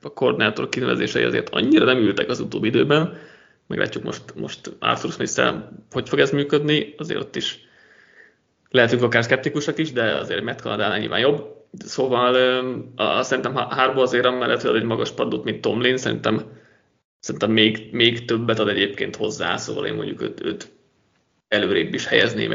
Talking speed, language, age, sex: 160 wpm, Hungarian, 30-49, male